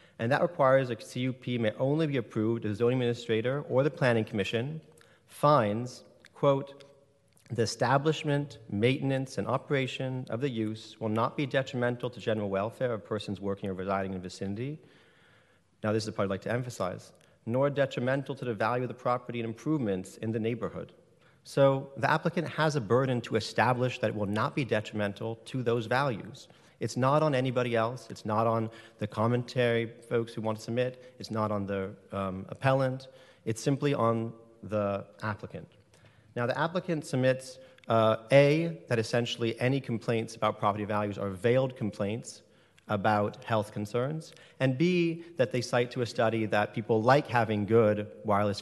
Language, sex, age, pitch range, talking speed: English, male, 40-59, 110-135 Hz, 175 wpm